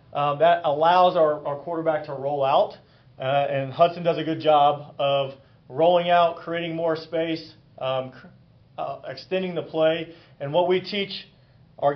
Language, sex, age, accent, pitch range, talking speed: English, male, 30-49, American, 140-170 Hz, 160 wpm